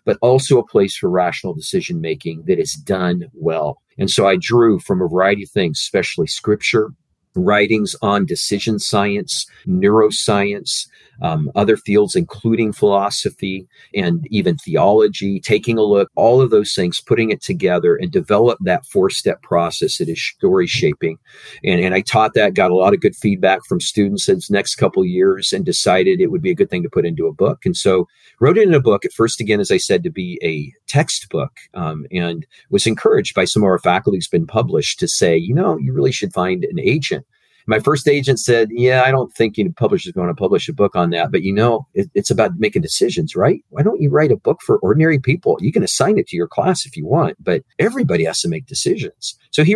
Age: 40-59